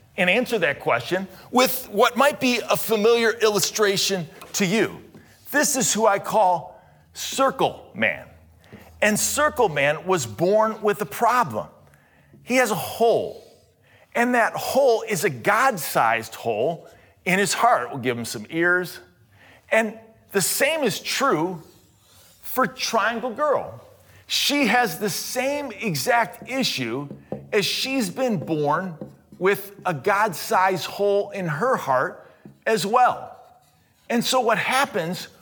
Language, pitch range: English, 190-255 Hz